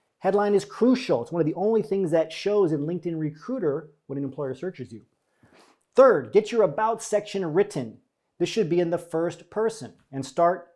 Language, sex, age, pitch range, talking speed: English, male, 40-59, 140-195 Hz, 190 wpm